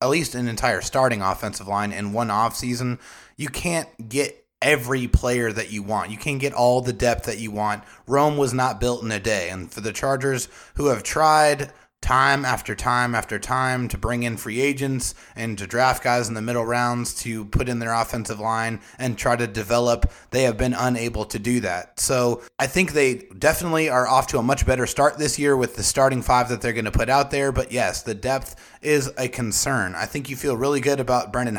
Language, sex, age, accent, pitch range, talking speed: English, male, 30-49, American, 115-140 Hz, 220 wpm